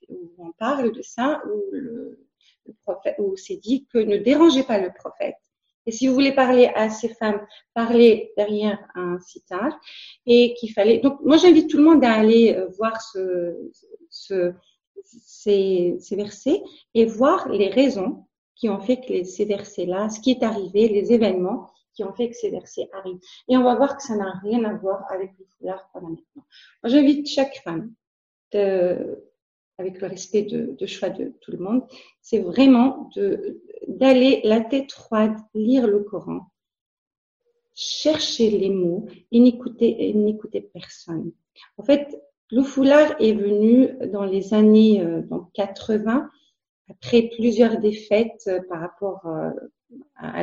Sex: female